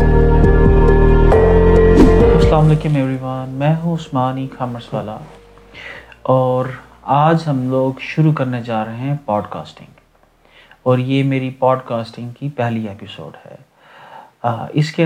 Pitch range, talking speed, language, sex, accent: 125-150 Hz, 100 wpm, English, male, Indian